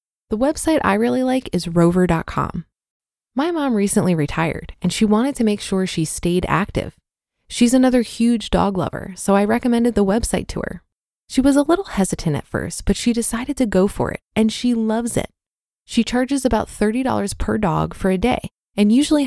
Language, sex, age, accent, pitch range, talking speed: English, female, 20-39, American, 195-255 Hz, 190 wpm